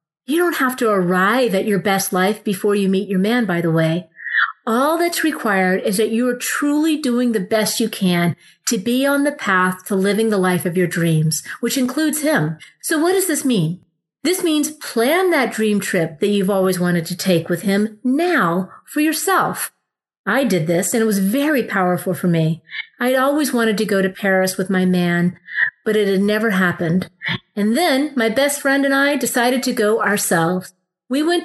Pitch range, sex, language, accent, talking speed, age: 185-250 Hz, female, English, American, 200 wpm, 40-59